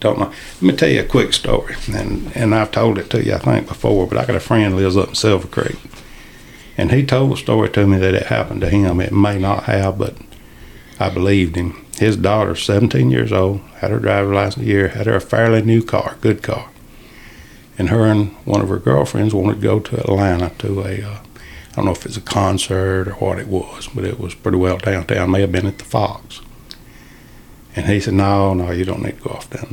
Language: English